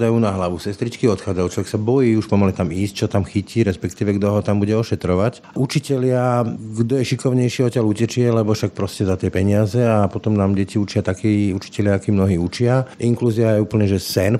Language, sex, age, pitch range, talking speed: Slovak, male, 50-69, 95-120 Hz, 195 wpm